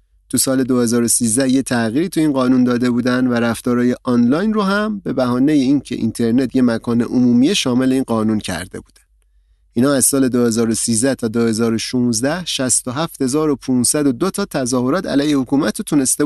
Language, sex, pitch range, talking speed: Persian, male, 115-170 Hz, 150 wpm